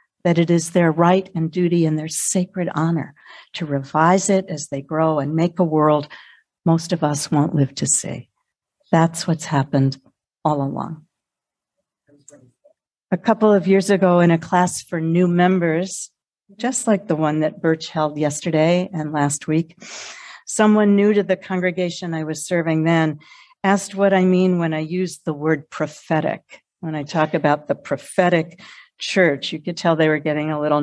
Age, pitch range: 60-79, 155-200 Hz